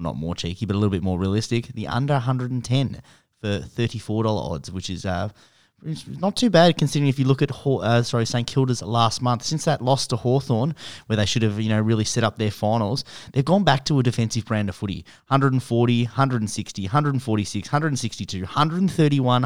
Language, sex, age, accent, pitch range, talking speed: English, male, 30-49, Australian, 105-130 Hz, 195 wpm